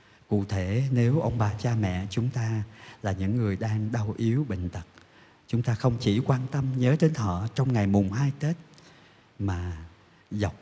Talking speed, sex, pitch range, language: 185 wpm, male, 100-130 Hz, Vietnamese